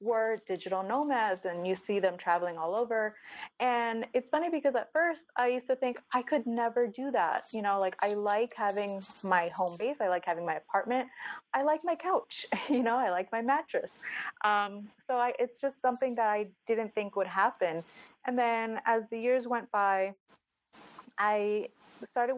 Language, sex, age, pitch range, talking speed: English, female, 30-49, 185-230 Hz, 185 wpm